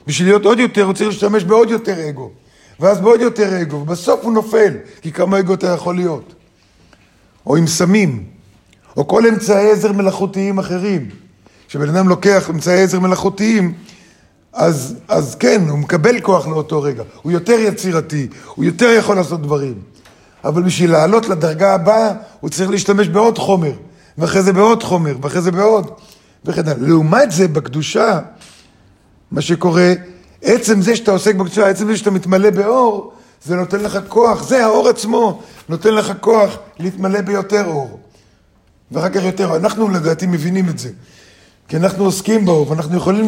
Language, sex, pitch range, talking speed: Hebrew, male, 160-205 Hz, 160 wpm